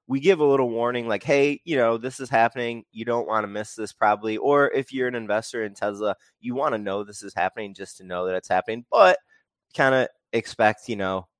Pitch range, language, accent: 100-125 Hz, English, American